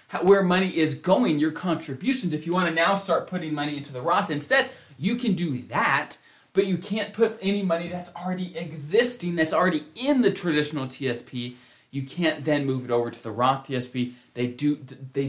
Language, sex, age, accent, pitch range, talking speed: English, male, 20-39, American, 140-190 Hz, 190 wpm